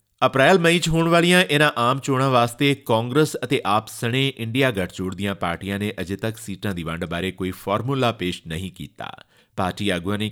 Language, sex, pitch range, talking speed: Punjabi, male, 100-140 Hz, 170 wpm